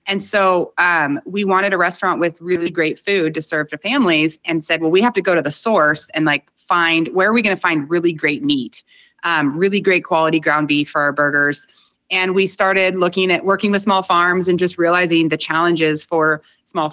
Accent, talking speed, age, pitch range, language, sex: American, 220 wpm, 30-49, 160-195 Hz, English, female